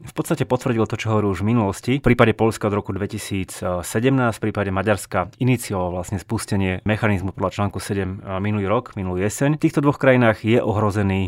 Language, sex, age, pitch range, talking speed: Slovak, male, 30-49, 95-120 Hz, 180 wpm